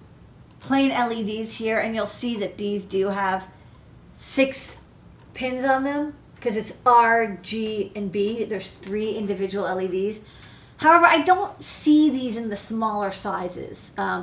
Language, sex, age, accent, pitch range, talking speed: English, female, 40-59, American, 195-245 Hz, 145 wpm